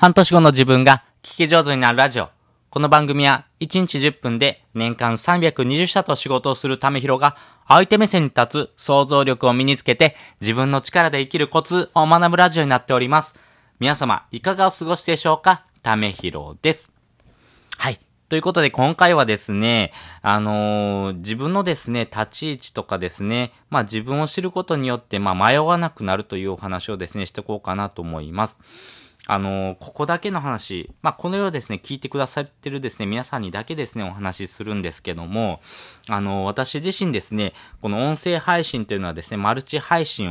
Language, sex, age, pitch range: Japanese, male, 20-39, 100-145 Hz